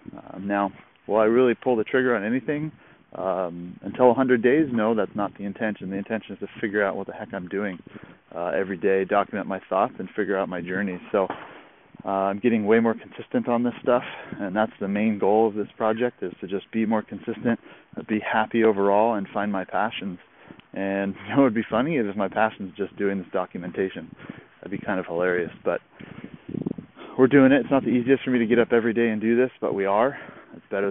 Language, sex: English, male